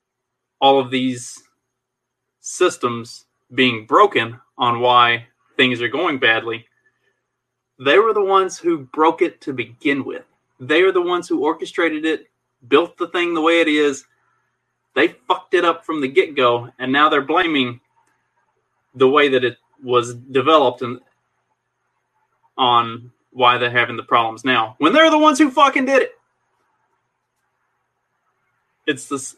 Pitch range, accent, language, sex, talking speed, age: 125-165 Hz, American, English, male, 145 wpm, 30-49